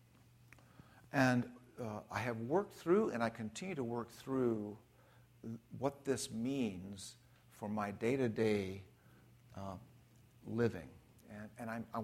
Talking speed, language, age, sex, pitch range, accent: 110 wpm, English, 60-79, male, 105-125 Hz, American